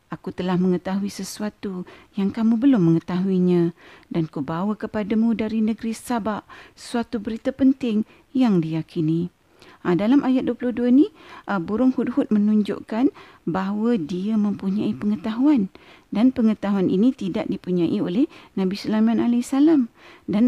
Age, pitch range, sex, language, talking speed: 40-59, 195-270 Hz, female, Malay, 125 wpm